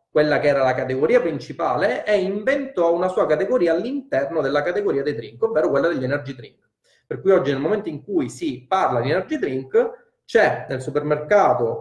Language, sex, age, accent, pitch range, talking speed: Italian, male, 30-49, native, 125-185 Hz, 185 wpm